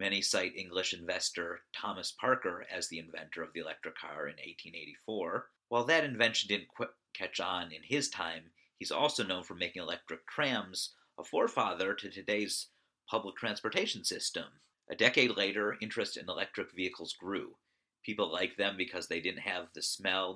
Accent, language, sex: American, English, male